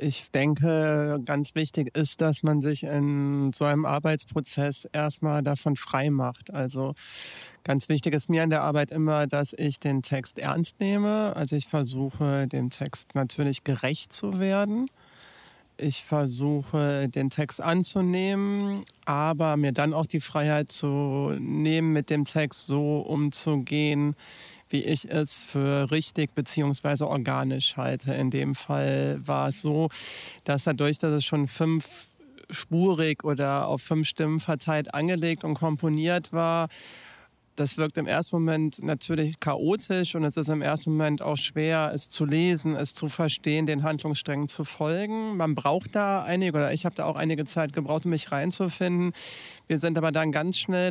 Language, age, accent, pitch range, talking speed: German, 40-59, German, 140-160 Hz, 160 wpm